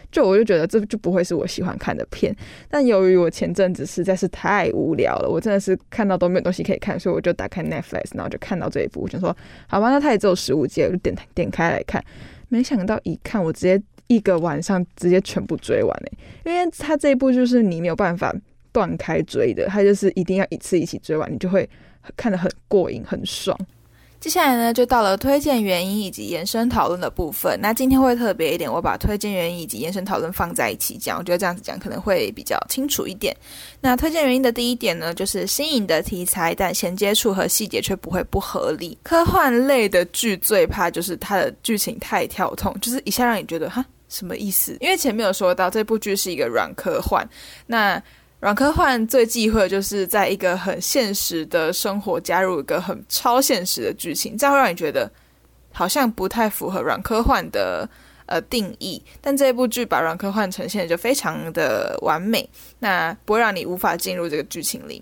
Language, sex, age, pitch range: Chinese, female, 10-29, 185-255 Hz